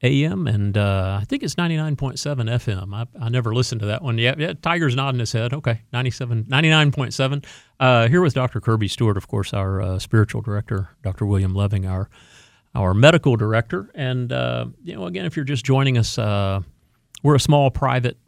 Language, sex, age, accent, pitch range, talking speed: English, male, 40-59, American, 100-130 Hz, 185 wpm